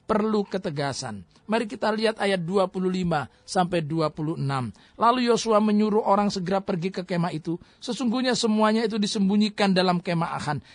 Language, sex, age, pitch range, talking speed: Indonesian, male, 40-59, 175-220 Hz, 140 wpm